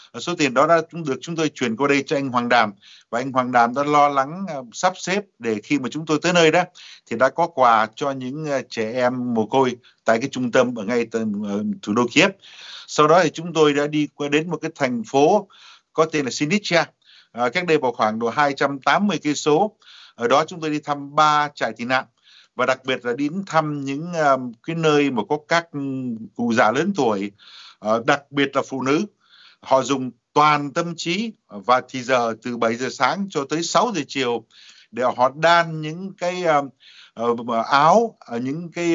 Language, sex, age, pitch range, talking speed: Vietnamese, male, 60-79, 125-160 Hz, 215 wpm